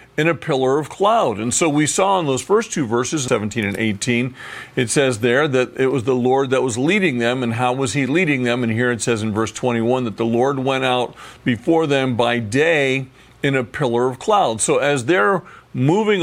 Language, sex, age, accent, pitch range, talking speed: English, male, 50-69, American, 120-145 Hz, 220 wpm